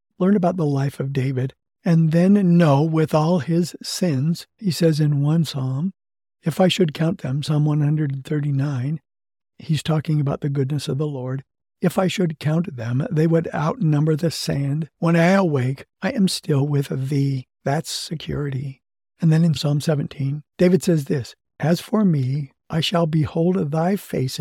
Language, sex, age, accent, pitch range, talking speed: English, male, 60-79, American, 135-165 Hz, 170 wpm